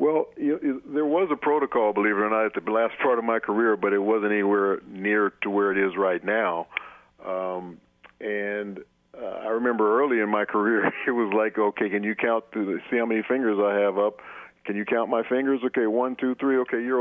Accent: American